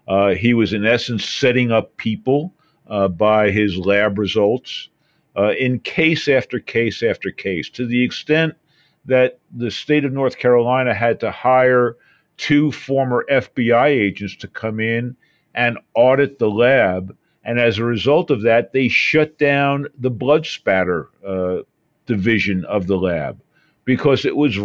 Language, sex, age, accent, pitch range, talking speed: English, male, 50-69, American, 110-140 Hz, 155 wpm